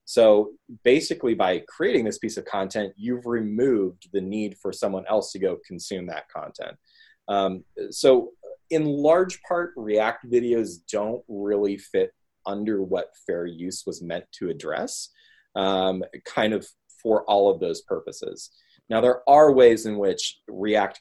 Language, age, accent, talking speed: English, 30-49, American, 150 wpm